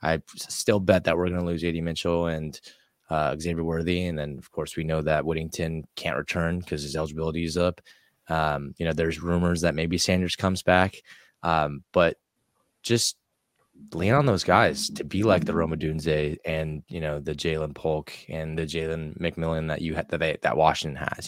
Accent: American